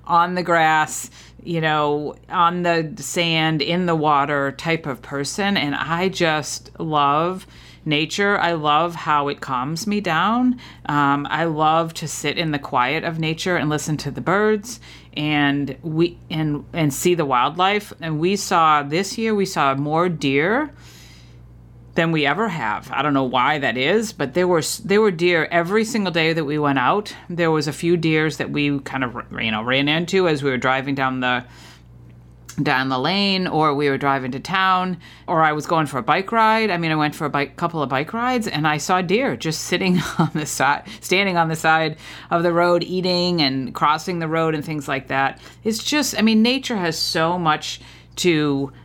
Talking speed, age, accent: 195 wpm, 40-59, American